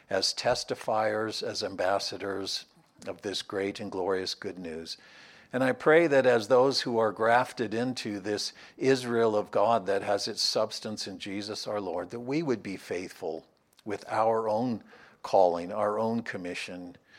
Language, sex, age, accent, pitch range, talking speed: English, male, 60-79, American, 100-120 Hz, 155 wpm